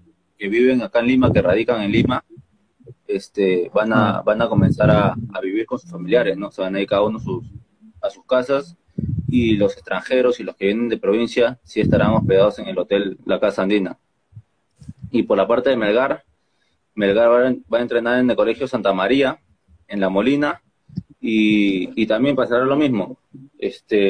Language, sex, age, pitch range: Spanish, male, 20-39, 100-130 Hz